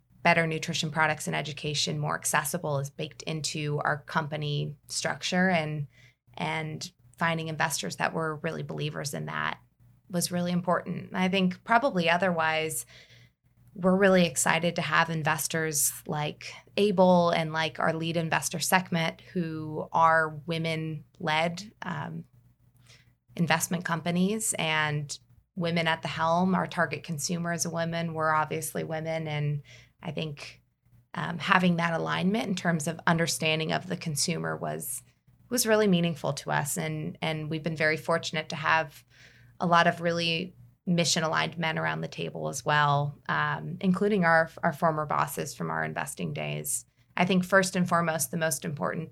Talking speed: 145 wpm